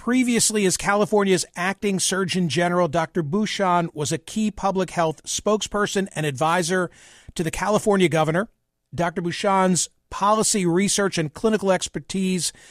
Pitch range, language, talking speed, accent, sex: 165-205 Hz, English, 125 wpm, American, male